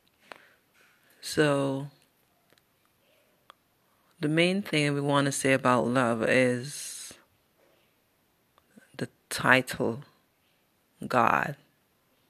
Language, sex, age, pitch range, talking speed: English, female, 30-49, 125-145 Hz, 70 wpm